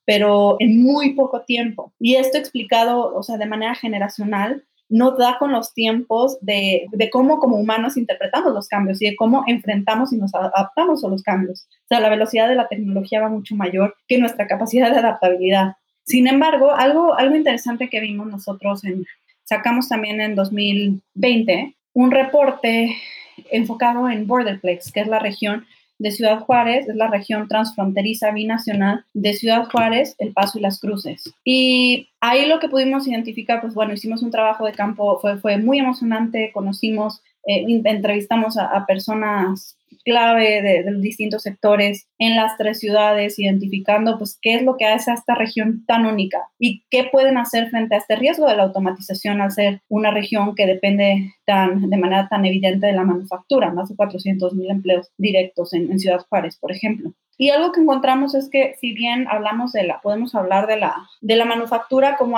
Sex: female